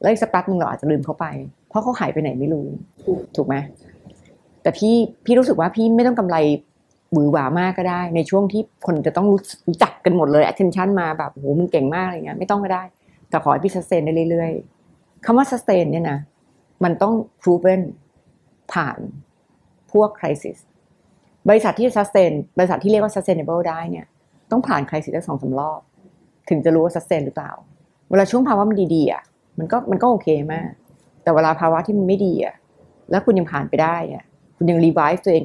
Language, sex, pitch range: Thai, female, 155-195 Hz